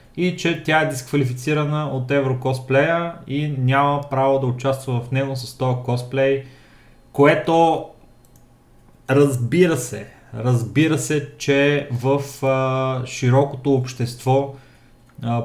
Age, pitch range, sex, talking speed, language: 30-49, 125-140 Hz, male, 110 wpm, Bulgarian